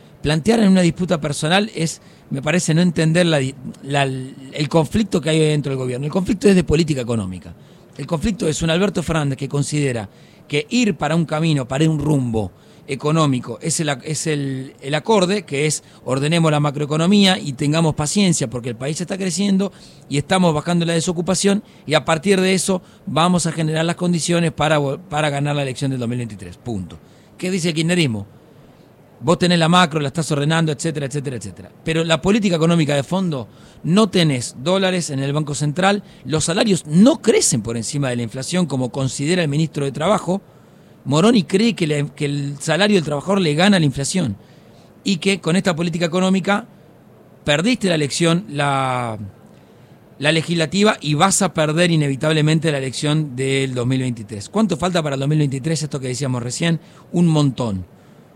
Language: English